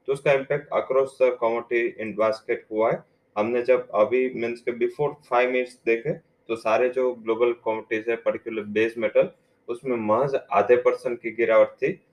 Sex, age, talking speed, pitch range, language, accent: male, 20-39, 175 wpm, 105-140 Hz, English, Indian